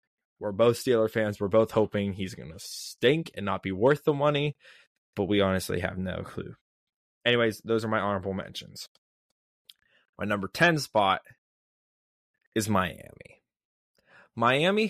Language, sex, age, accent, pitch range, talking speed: English, male, 20-39, American, 100-115 Hz, 145 wpm